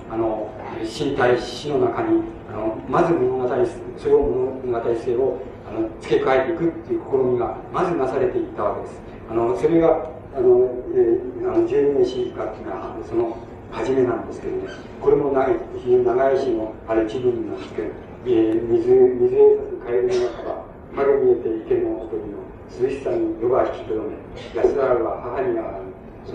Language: Japanese